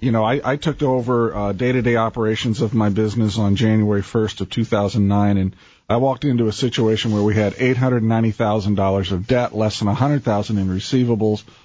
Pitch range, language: 105-125 Hz, English